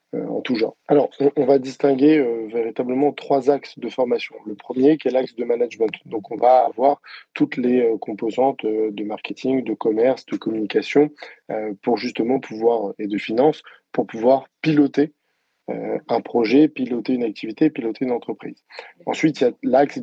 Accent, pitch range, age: French, 115-150 Hz, 20-39